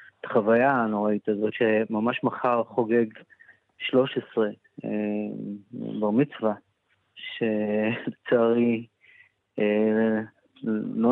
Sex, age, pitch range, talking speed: male, 30-49, 105-120 Hz, 75 wpm